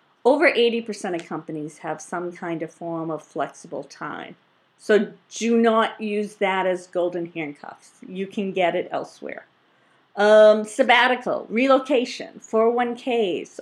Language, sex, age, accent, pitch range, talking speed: English, female, 50-69, American, 200-245 Hz, 130 wpm